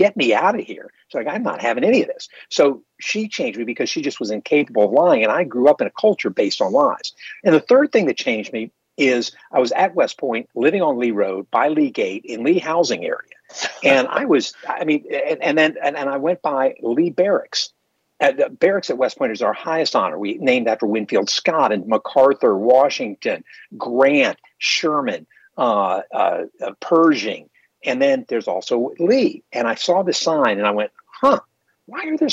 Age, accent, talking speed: 50-69, American, 210 wpm